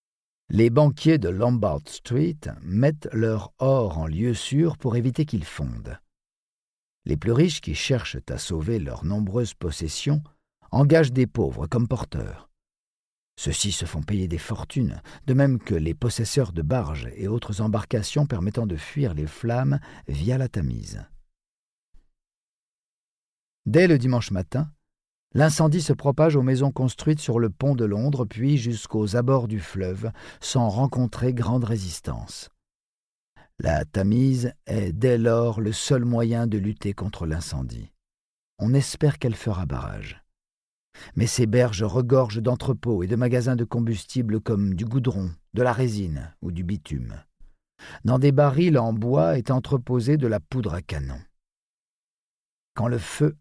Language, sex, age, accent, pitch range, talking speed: French, male, 50-69, French, 100-130 Hz, 145 wpm